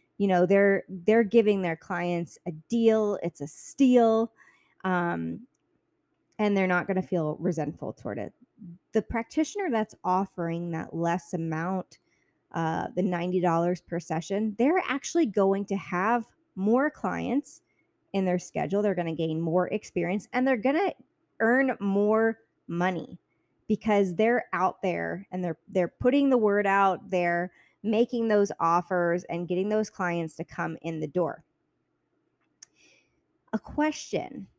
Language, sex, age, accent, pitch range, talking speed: English, female, 20-39, American, 175-230 Hz, 145 wpm